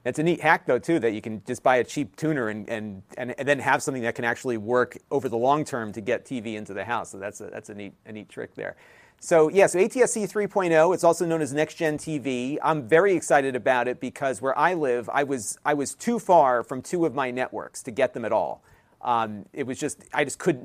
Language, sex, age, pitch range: English, male, 40-59, 125-155 Hz